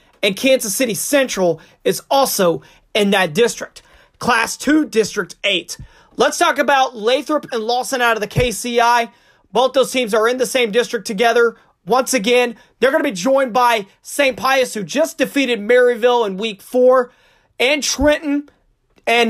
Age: 30-49